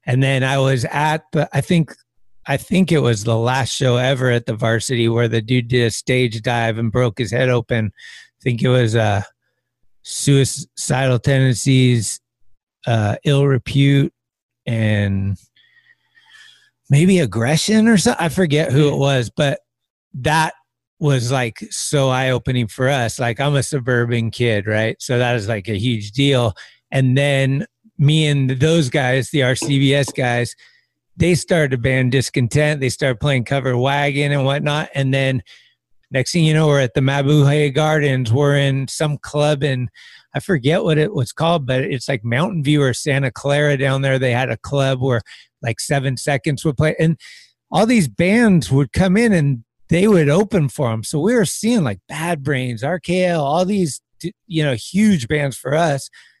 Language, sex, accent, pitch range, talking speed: English, male, American, 125-155 Hz, 175 wpm